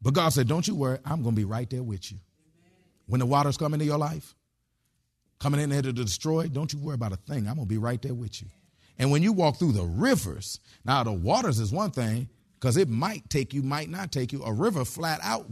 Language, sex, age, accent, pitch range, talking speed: English, male, 40-59, American, 120-170 Hz, 255 wpm